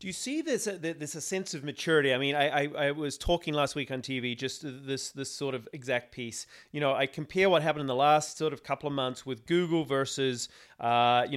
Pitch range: 140-175 Hz